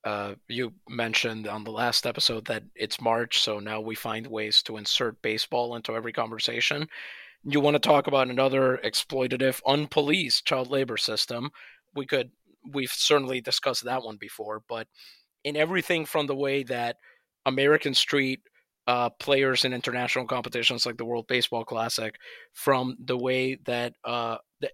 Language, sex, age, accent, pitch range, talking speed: English, male, 30-49, American, 120-165 Hz, 160 wpm